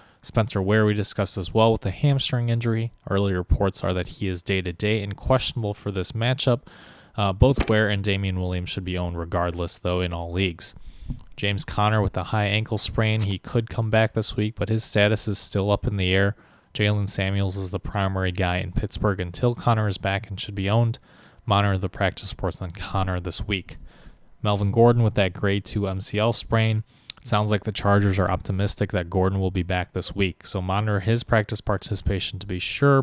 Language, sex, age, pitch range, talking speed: English, male, 20-39, 95-110 Hz, 200 wpm